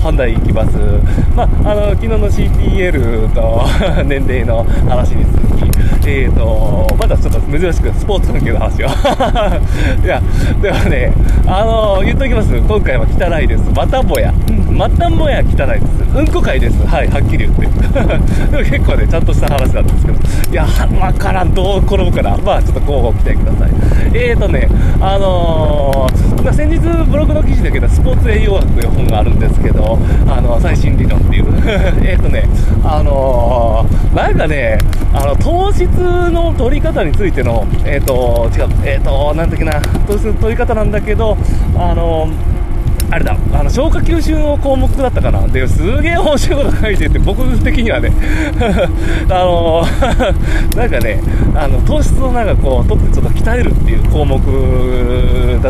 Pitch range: 85-100 Hz